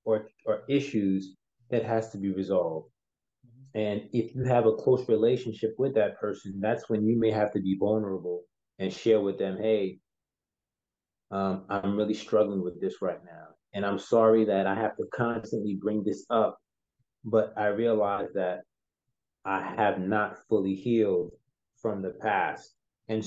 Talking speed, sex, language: 160 wpm, male, English